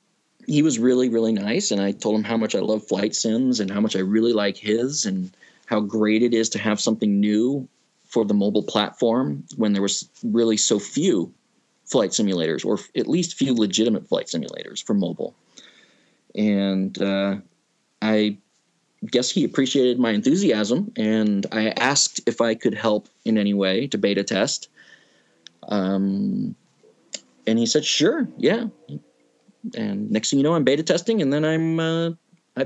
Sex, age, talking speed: male, 20-39, 170 wpm